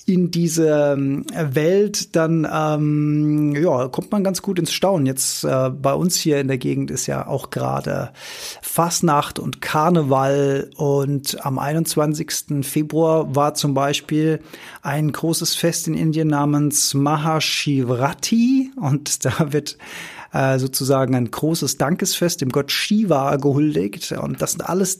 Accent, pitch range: German, 140-175 Hz